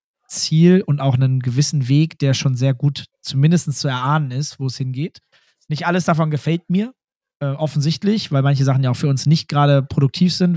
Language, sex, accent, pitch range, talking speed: German, male, German, 130-155 Hz, 200 wpm